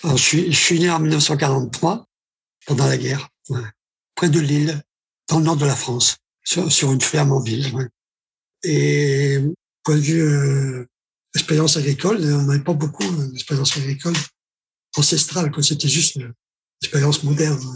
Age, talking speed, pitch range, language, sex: 60-79, 165 wpm, 135-160 Hz, French, male